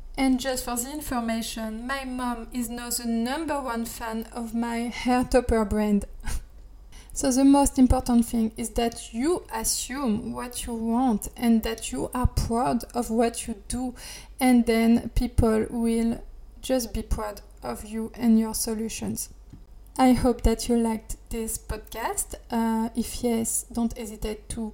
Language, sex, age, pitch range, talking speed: English, female, 20-39, 225-250 Hz, 155 wpm